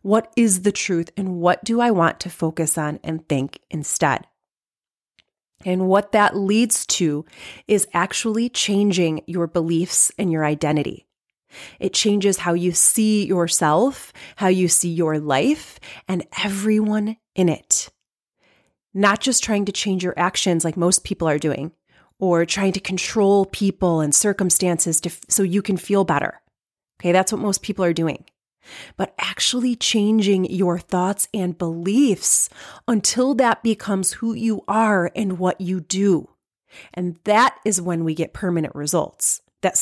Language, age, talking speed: English, 30-49, 150 wpm